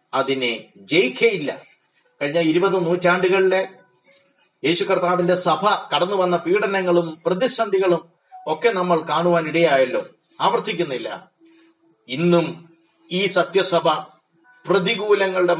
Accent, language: native, Malayalam